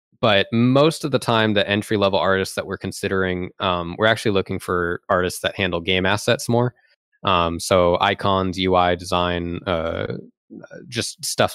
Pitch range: 90-110 Hz